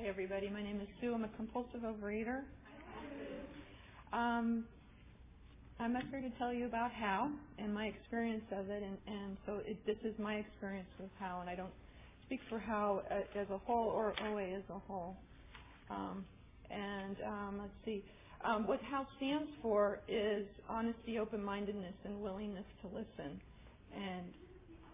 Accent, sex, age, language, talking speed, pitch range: American, female, 40-59, English, 150 wpm, 185-225 Hz